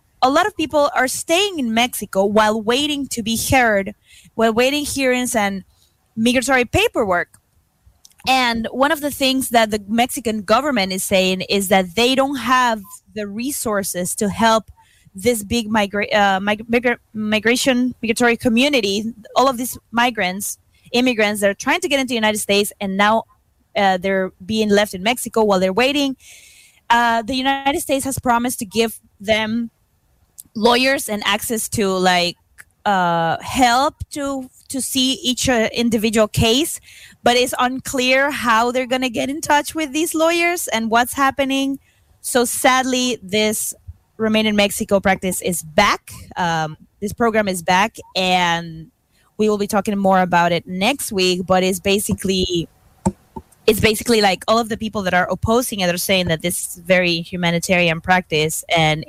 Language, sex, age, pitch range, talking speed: Spanish, female, 20-39, 195-255 Hz, 155 wpm